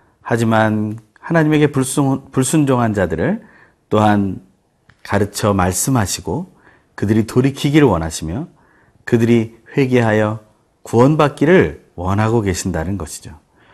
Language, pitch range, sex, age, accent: Korean, 100-140 Hz, male, 40-59, native